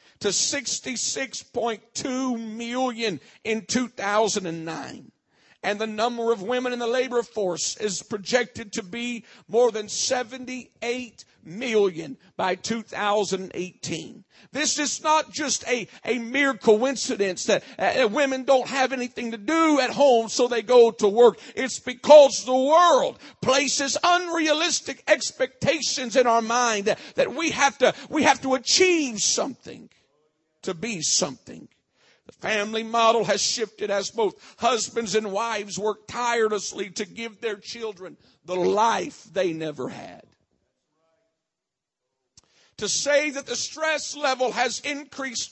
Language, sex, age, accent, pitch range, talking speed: English, male, 50-69, American, 210-260 Hz, 130 wpm